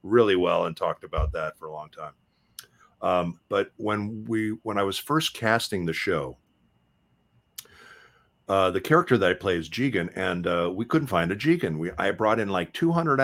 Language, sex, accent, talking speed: English, male, American, 190 wpm